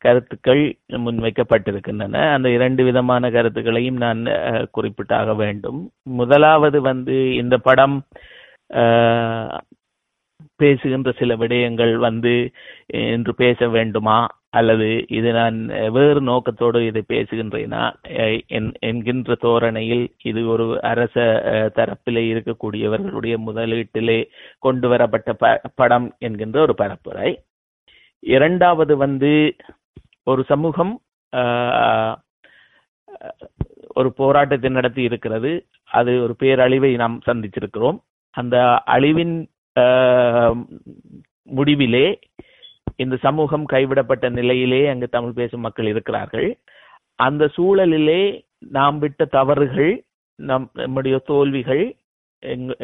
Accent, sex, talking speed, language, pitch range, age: native, male, 85 wpm, Tamil, 115-135 Hz, 30-49